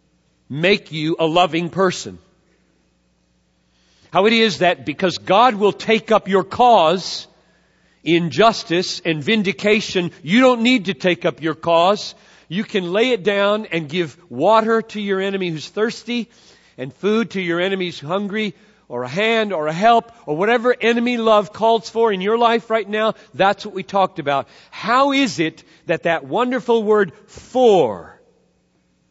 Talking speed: 160 wpm